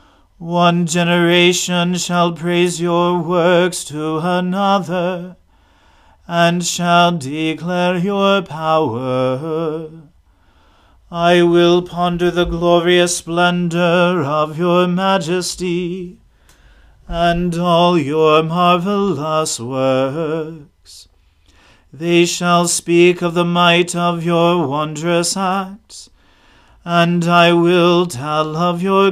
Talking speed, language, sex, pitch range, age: 90 wpm, English, male, 155-175 Hz, 40-59